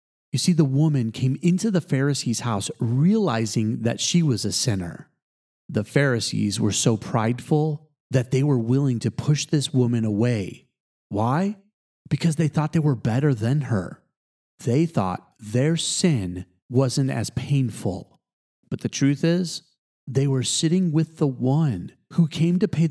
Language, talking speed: English, 155 wpm